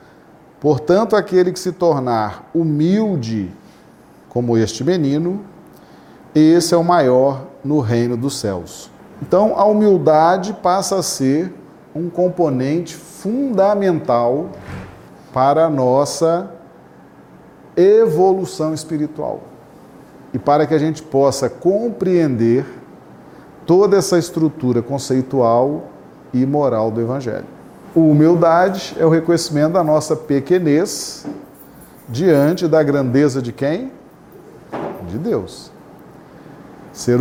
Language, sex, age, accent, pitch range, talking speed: Portuguese, male, 40-59, Brazilian, 130-175 Hz, 100 wpm